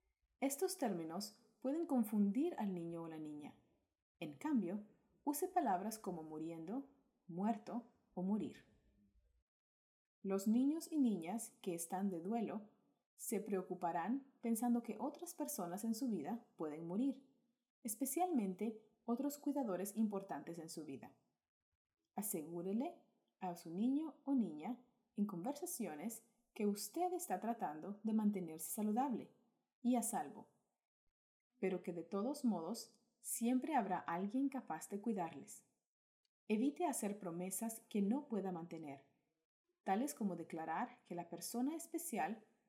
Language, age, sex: English, 30-49, female